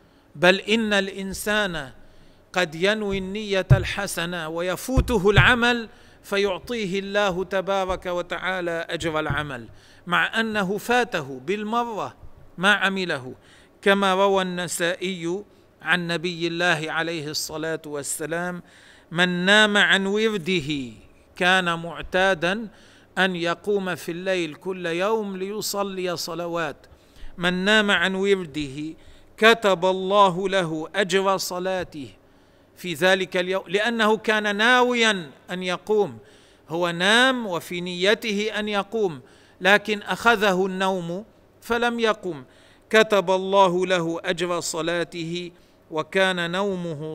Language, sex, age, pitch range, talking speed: Arabic, male, 40-59, 160-200 Hz, 100 wpm